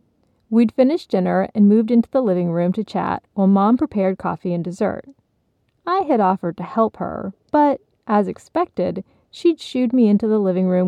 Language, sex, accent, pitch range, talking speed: English, female, American, 180-240 Hz, 180 wpm